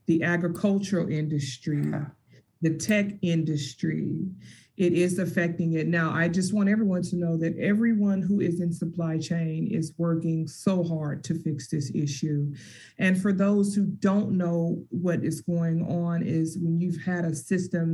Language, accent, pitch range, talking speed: English, American, 165-195 Hz, 160 wpm